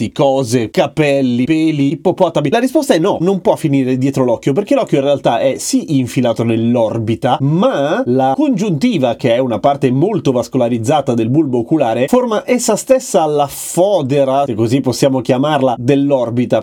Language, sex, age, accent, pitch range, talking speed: Italian, male, 30-49, native, 130-160 Hz, 155 wpm